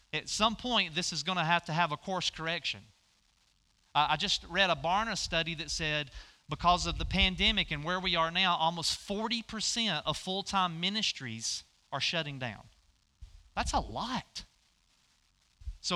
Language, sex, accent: English, male, American